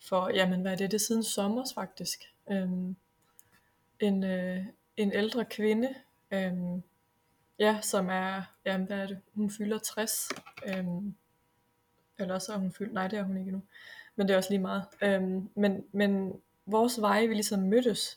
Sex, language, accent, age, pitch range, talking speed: female, Danish, native, 20-39, 185-220 Hz, 175 wpm